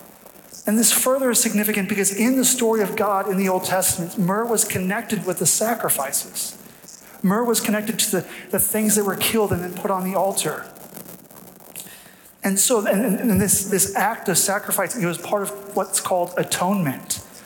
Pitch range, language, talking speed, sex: 180-210 Hz, English, 180 wpm, male